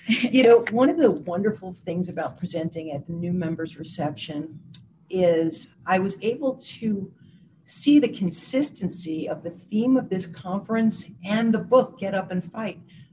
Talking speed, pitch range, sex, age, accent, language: 160 wpm, 165-210 Hz, female, 40-59, American, English